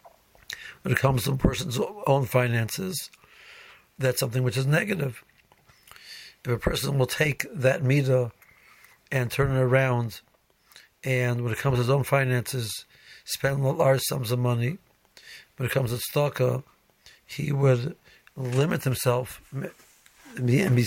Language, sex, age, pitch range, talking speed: English, male, 60-79, 125-145 Hz, 140 wpm